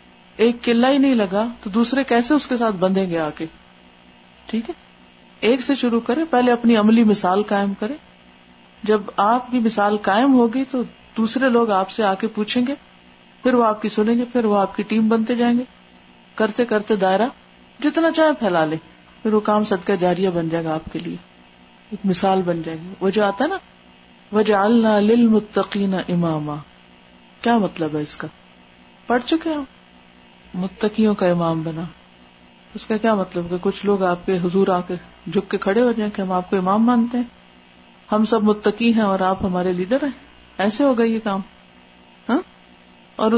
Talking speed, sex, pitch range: 175 wpm, female, 155-230 Hz